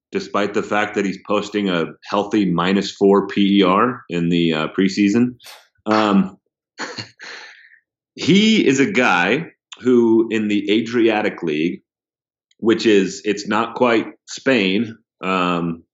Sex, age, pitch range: male, 30-49, 95-110 Hz